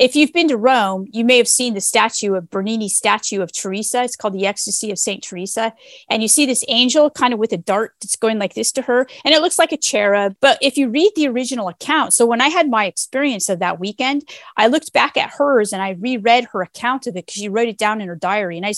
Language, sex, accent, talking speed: English, female, American, 265 wpm